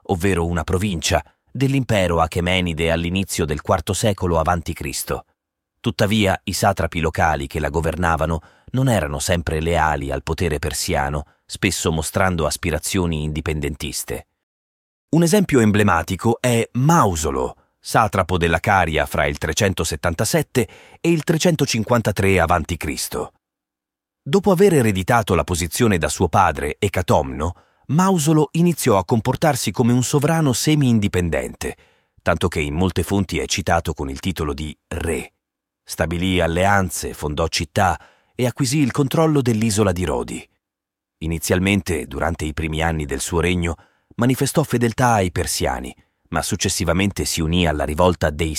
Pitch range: 80-110 Hz